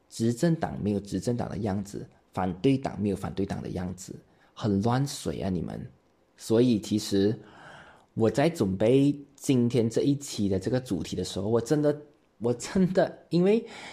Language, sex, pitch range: Chinese, male, 100-140 Hz